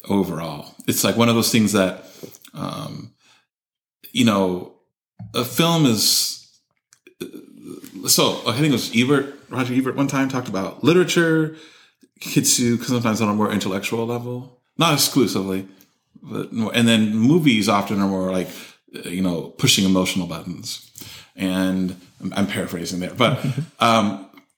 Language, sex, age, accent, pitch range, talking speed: English, male, 30-49, American, 95-130 Hz, 140 wpm